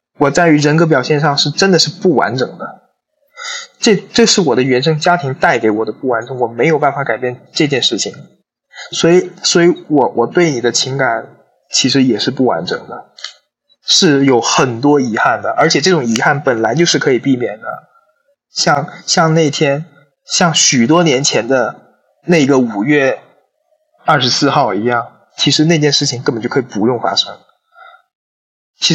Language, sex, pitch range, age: Chinese, male, 135-180 Hz, 20-39